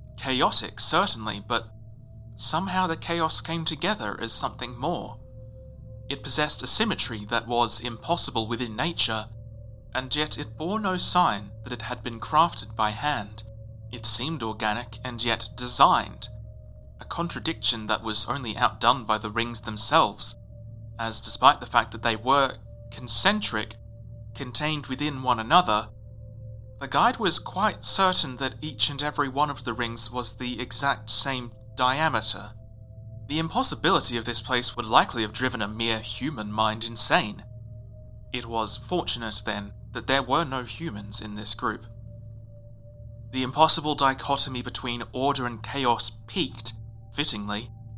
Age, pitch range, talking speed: 30-49, 110-135 Hz, 145 wpm